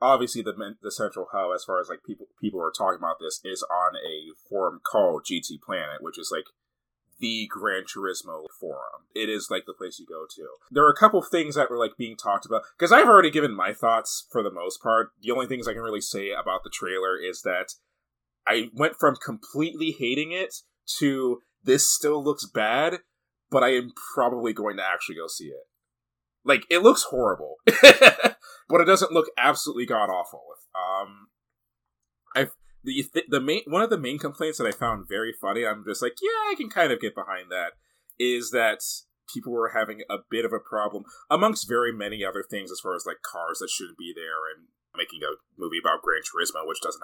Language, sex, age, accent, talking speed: English, male, 20-39, American, 205 wpm